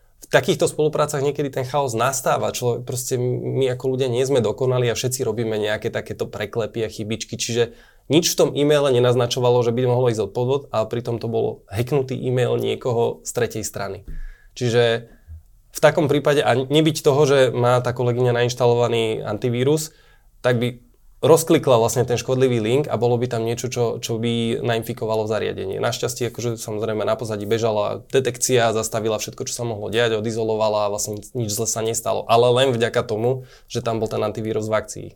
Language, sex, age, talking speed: Slovak, male, 20-39, 180 wpm